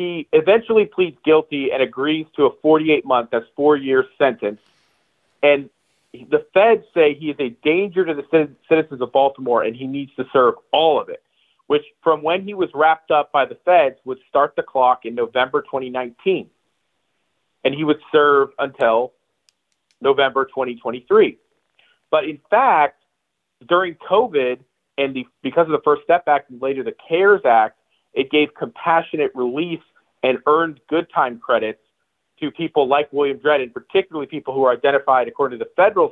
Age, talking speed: 40-59, 165 wpm